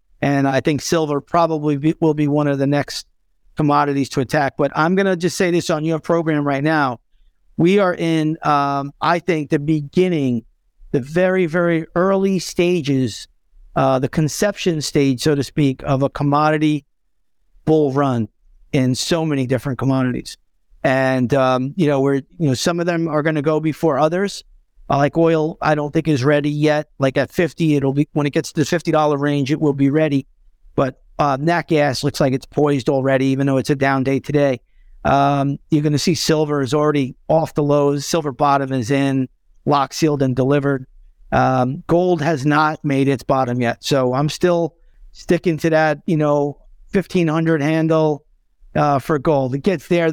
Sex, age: male, 50-69